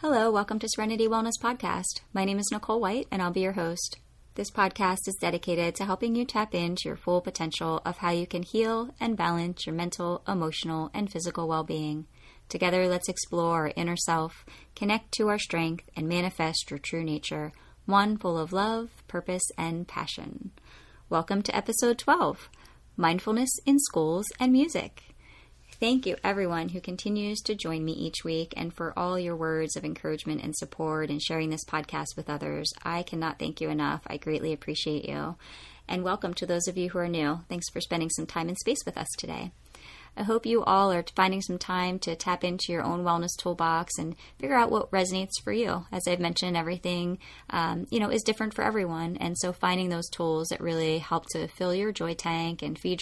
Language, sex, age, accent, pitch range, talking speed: English, female, 30-49, American, 165-200 Hz, 195 wpm